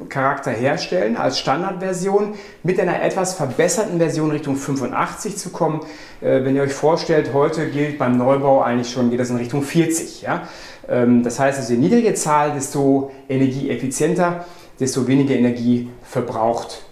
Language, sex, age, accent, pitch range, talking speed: German, male, 40-59, German, 125-155 Hz, 155 wpm